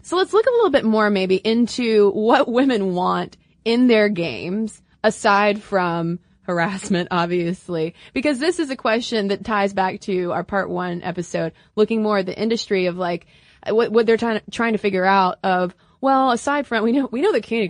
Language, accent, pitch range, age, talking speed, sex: English, American, 180-225 Hz, 20-39, 190 wpm, female